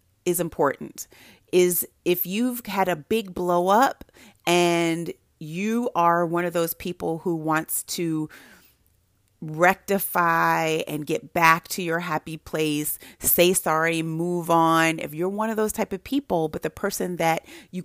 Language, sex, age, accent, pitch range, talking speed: English, female, 30-49, American, 165-200 Hz, 150 wpm